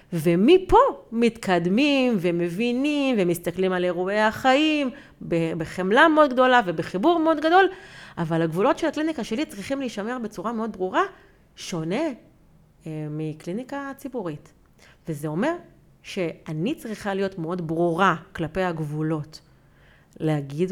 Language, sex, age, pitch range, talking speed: Hebrew, female, 30-49, 170-245 Hz, 105 wpm